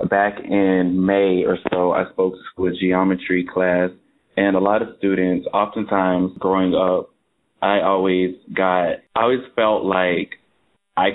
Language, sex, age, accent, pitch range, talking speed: English, male, 20-39, American, 90-95 Hz, 145 wpm